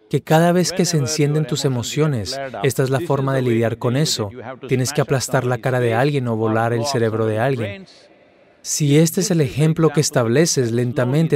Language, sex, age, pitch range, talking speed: Spanish, male, 30-49, 130-165 Hz, 195 wpm